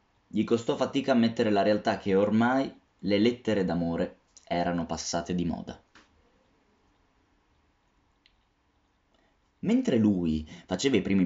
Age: 20-39